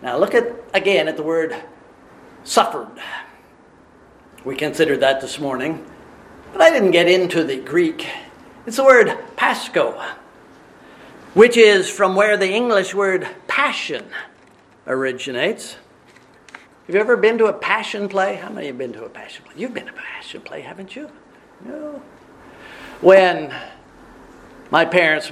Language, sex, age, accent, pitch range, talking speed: English, male, 50-69, American, 160-215 Hz, 145 wpm